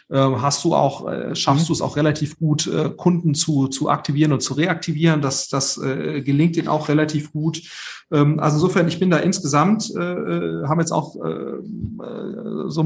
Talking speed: 155 wpm